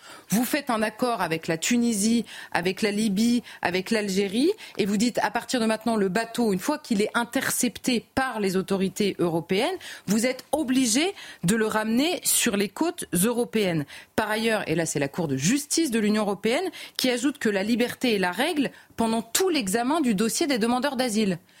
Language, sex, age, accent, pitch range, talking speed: French, female, 30-49, French, 195-260 Hz, 190 wpm